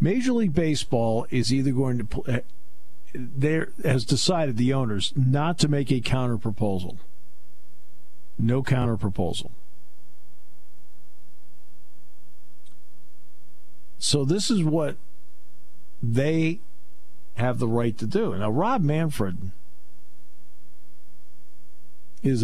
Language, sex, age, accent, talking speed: English, male, 50-69, American, 95 wpm